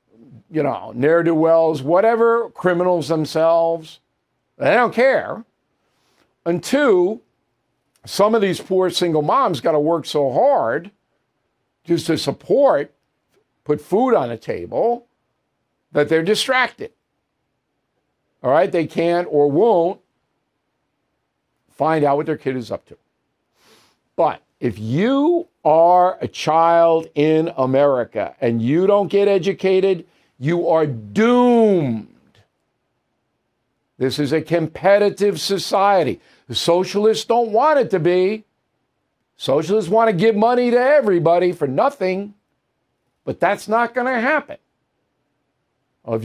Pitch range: 160-220 Hz